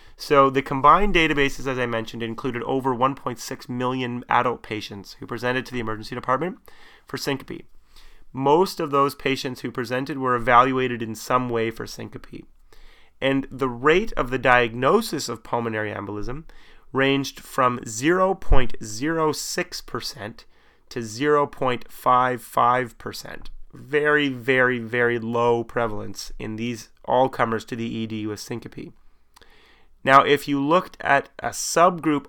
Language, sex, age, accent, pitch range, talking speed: English, male, 30-49, American, 115-140 Hz, 130 wpm